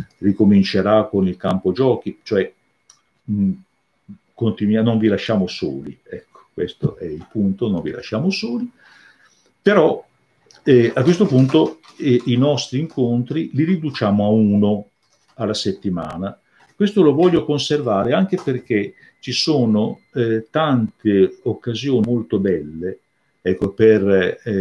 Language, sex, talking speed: Italian, male, 120 wpm